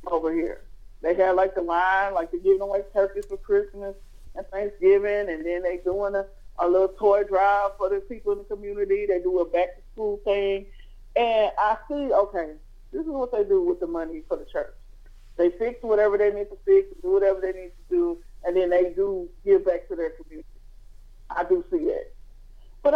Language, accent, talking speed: English, American, 205 wpm